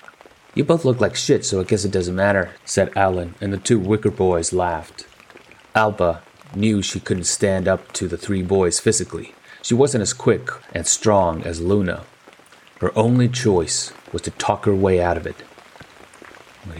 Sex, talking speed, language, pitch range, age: male, 180 wpm, English, 90-110 Hz, 30-49